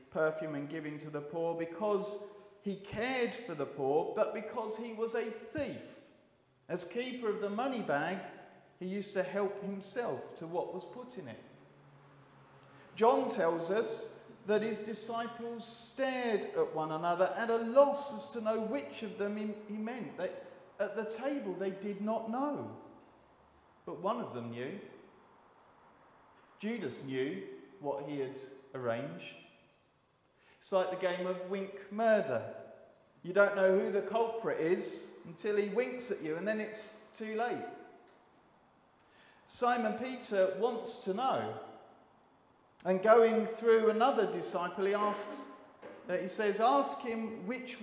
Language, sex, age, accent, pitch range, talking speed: English, male, 40-59, British, 175-230 Hz, 145 wpm